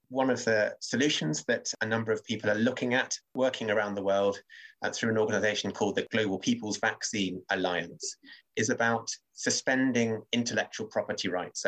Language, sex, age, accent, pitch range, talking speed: English, male, 30-49, British, 100-120 Hz, 160 wpm